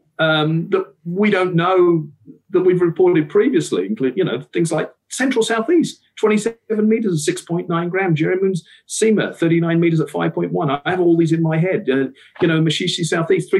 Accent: British